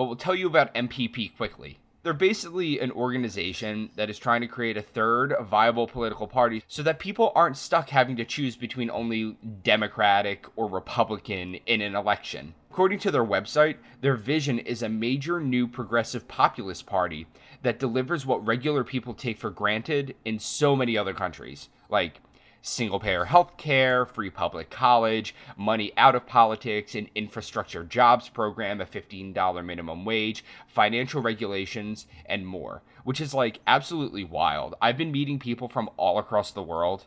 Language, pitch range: English, 100-130 Hz